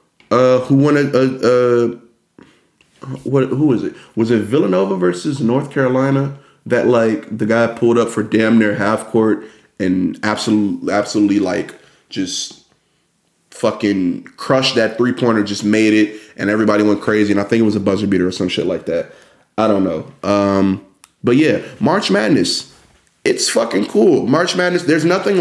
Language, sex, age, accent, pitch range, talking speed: English, male, 20-39, American, 105-130 Hz, 170 wpm